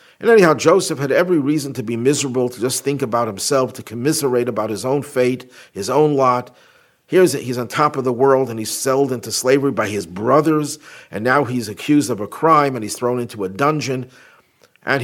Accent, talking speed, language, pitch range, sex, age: American, 210 wpm, English, 115-140 Hz, male, 50-69